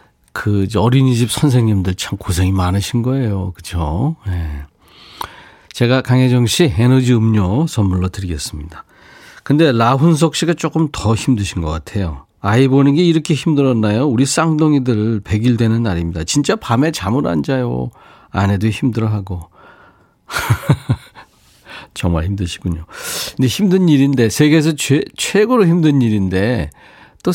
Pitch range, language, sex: 100-140 Hz, Korean, male